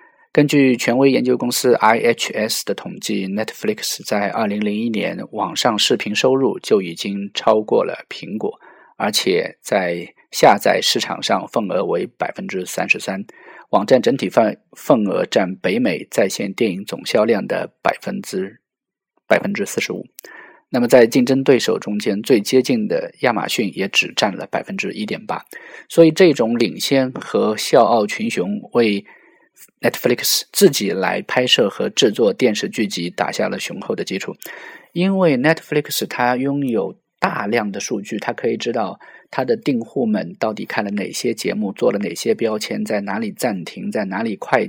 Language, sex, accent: Chinese, male, native